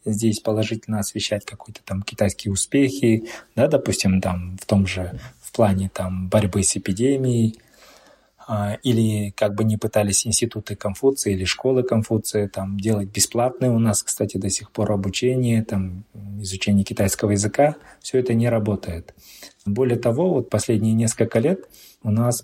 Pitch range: 100-115 Hz